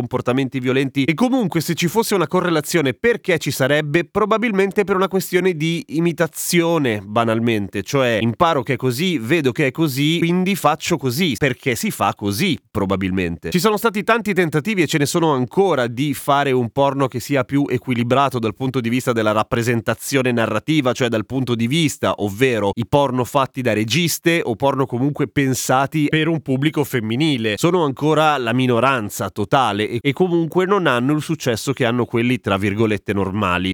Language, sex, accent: Italian, male, native